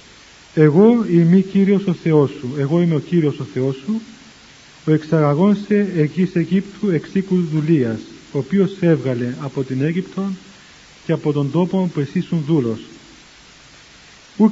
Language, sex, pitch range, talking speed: Greek, male, 145-195 Hz, 140 wpm